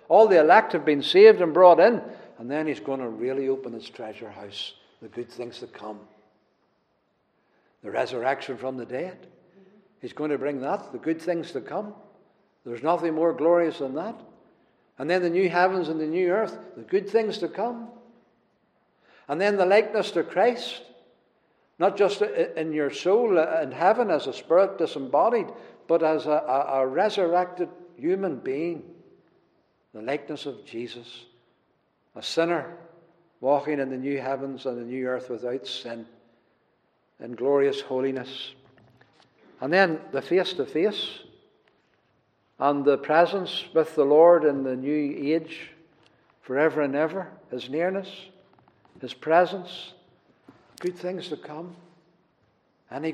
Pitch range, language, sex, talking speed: 135-180 Hz, English, male, 150 wpm